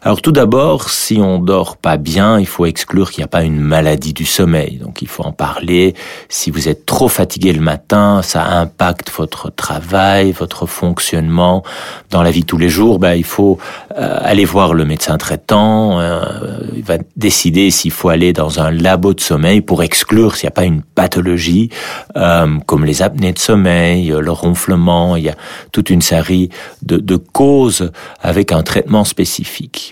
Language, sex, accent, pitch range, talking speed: French, male, French, 85-105 Hz, 190 wpm